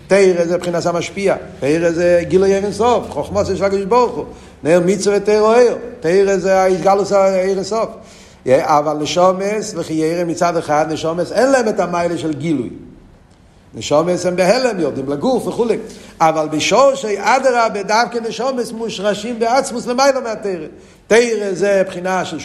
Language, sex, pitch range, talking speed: Hebrew, male, 170-215 Hz, 140 wpm